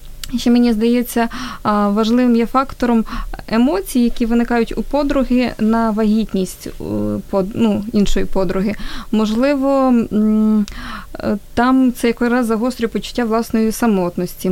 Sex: female